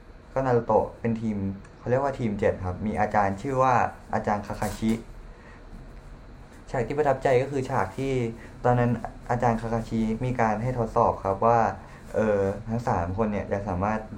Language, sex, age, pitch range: Thai, male, 20-39, 95-125 Hz